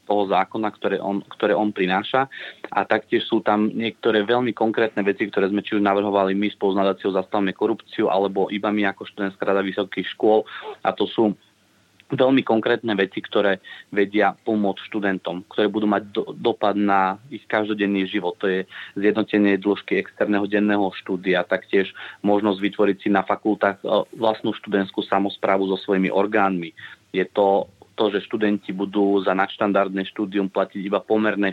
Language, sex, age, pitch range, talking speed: Slovak, male, 30-49, 95-105 Hz, 155 wpm